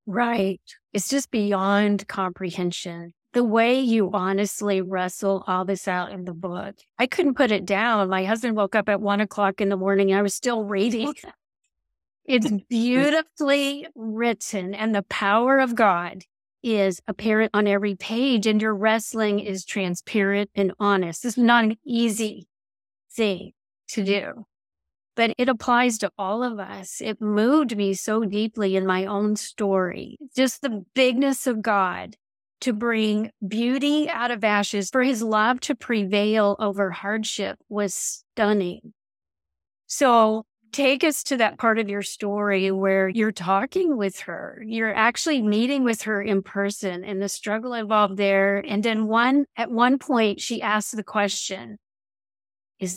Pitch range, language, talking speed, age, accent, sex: 195-235 Hz, English, 155 wpm, 40-59, American, female